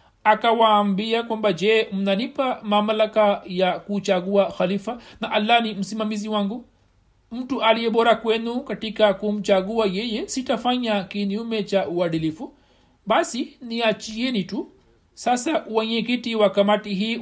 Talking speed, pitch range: 110 wpm, 195-230 Hz